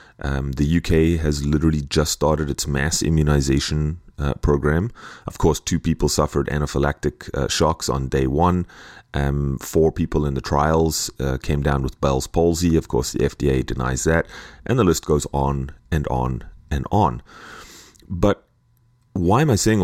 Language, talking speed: English, 165 wpm